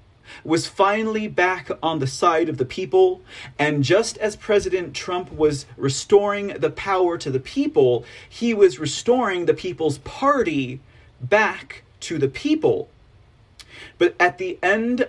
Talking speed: 140 wpm